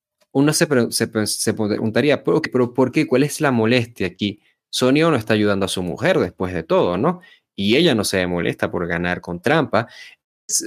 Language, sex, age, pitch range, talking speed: Spanish, male, 20-39, 100-130 Hz, 210 wpm